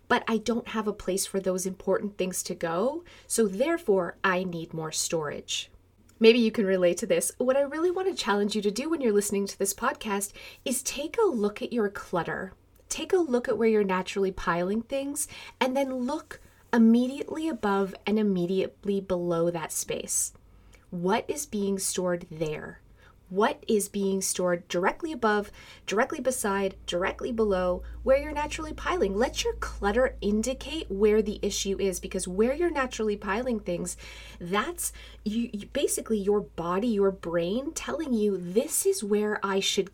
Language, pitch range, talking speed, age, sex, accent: English, 185-245 Hz, 170 wpm, 30-49, female, American